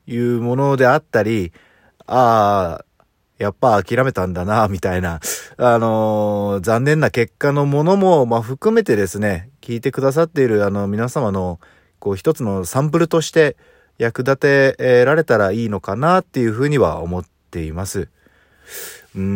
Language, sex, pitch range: Japanese, male, 95-140 Hz